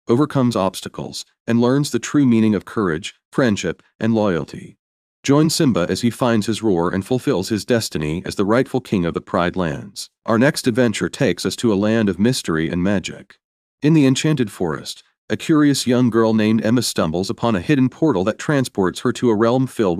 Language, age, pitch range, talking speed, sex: English, 40-59, 100-130 Hz, 195 wpm, male